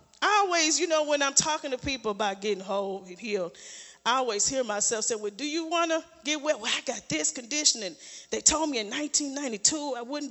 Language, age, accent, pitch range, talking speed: English, 40-59, American, 225-300 Hz, 235 wpm